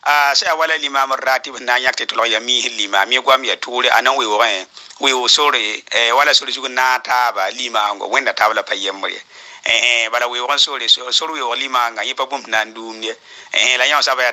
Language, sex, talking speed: Arabic, male, 170 wpm